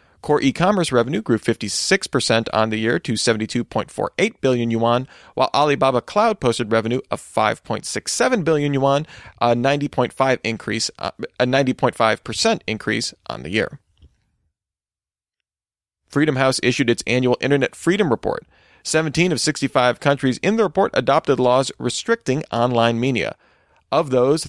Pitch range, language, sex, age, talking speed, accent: 115-160 Hz, English, male, 40-59, 125 wpm, American